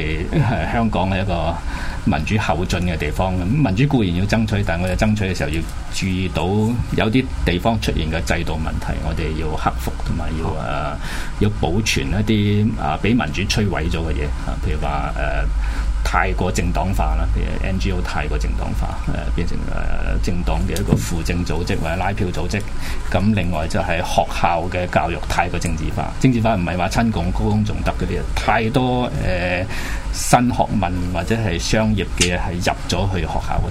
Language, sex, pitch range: Chinese, male, 80-95 Hz